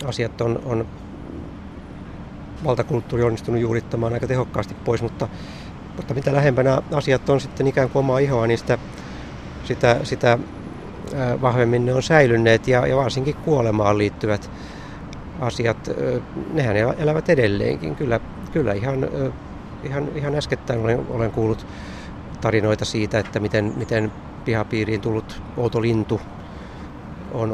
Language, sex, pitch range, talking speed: Finnish, male, 110-130 Hz, 120 wpm